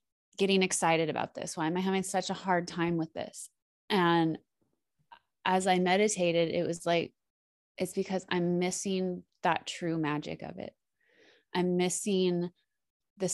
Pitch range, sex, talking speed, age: 160-180 Hz, female, 150 wpm, 20-39